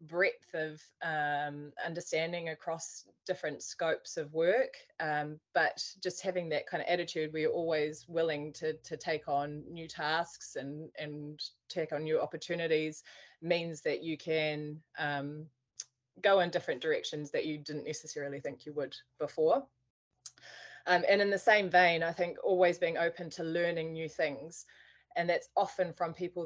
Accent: Australian